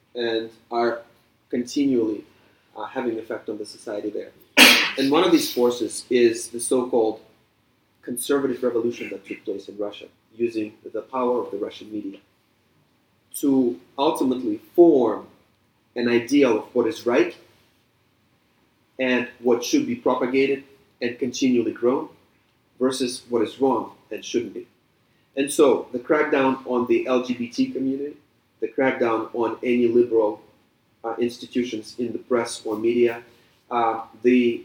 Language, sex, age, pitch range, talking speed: English, male, 30-49, 120-140 Hz, 135 wpm